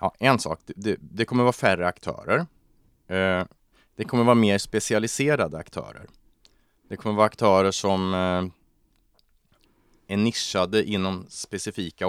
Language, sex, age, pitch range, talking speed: Swedish, male, 30-49, 95-110 Hz, 135 wpm